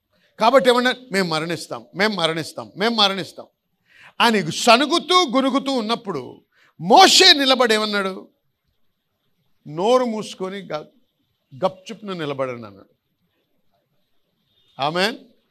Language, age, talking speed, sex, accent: Telugu, 50-69, 75 wpm, male, native